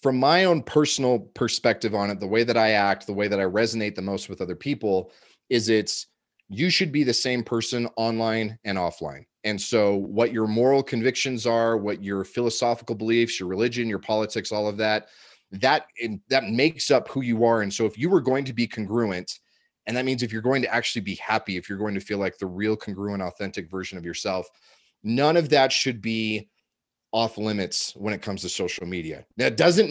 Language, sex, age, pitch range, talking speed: English, male, 30-49, 105-130 Hz, 215 wpm